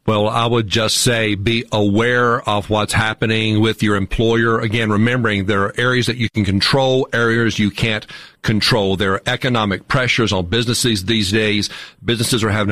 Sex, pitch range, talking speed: male, 105-125 Hz, 175 wpm